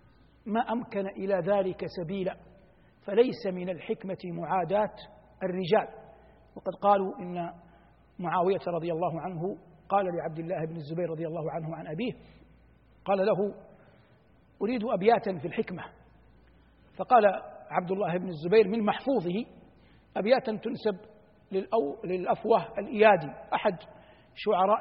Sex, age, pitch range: male, 60-79, 185-225 Hz